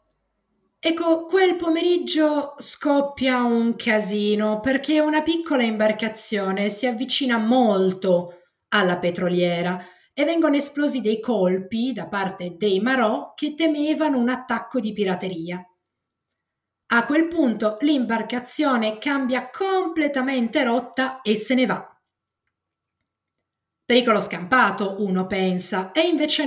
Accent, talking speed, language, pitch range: native, 105 wpm, Italian, 190-275 Hz